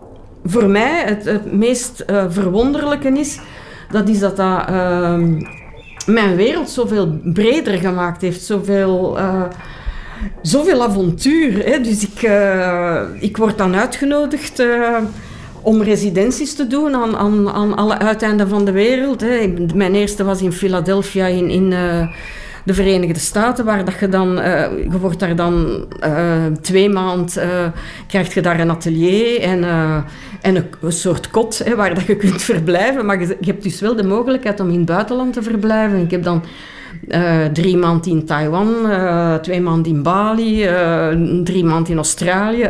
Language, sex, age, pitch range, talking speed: Dutch, female, 50-69, 175-220 Hz, 170 wpm